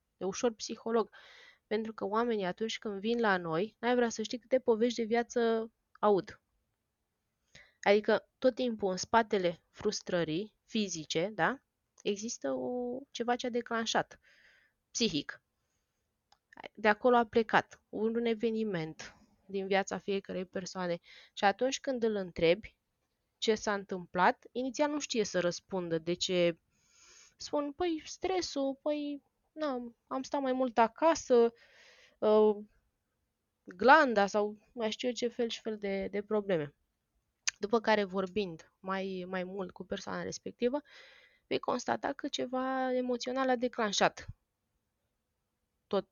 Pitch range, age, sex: 190-250 Hz, 20-39, female